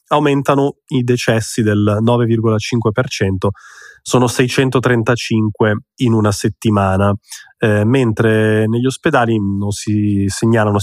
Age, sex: 20-39, male